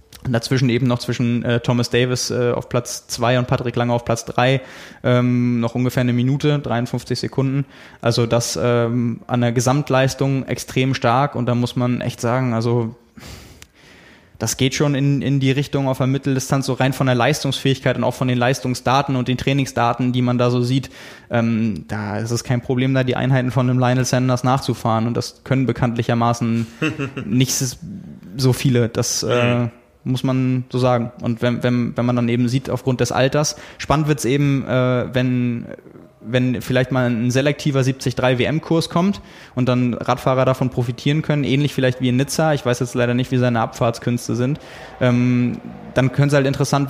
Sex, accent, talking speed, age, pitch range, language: male, German, 185 wpm, 20-39, 120-130 Hz, German